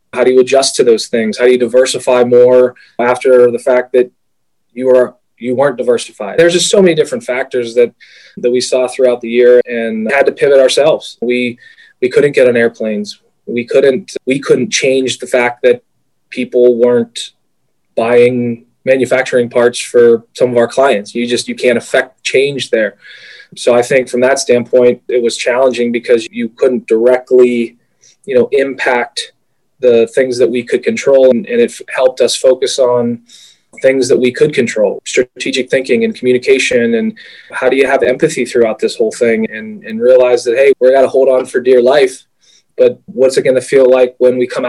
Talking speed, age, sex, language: 190 wpm, 20-39, male, English